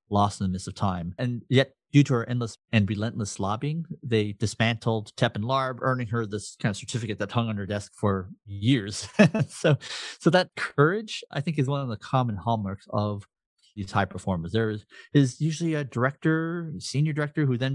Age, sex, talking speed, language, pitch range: 30-49, male, 200 wpm, English, 100-125 Hz